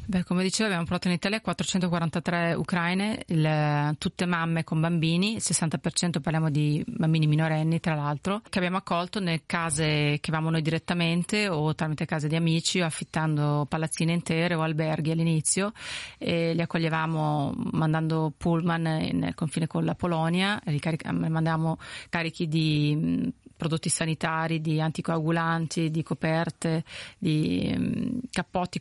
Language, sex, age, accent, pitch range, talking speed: Italian, female, 30-49, native, 160-175 Hz, 135 wpm